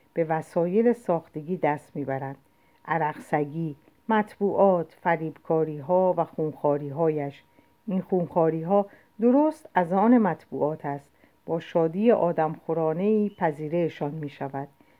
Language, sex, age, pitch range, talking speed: Persian, female, 50-69, 160-210 Hz, 95 wpm